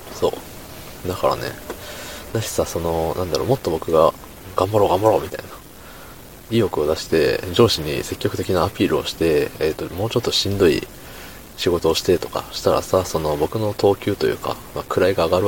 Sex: male